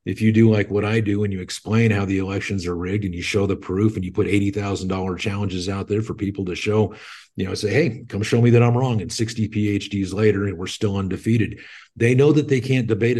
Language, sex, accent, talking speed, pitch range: English, male, American, 250 wpm, 100-120 Hz